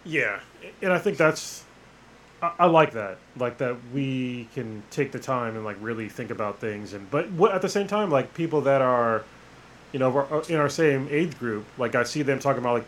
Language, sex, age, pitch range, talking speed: English, male, 20-39, 130-180 Hz, 220 wpm